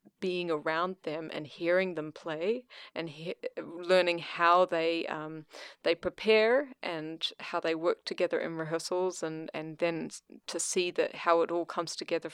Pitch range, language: 165-190 Hz, English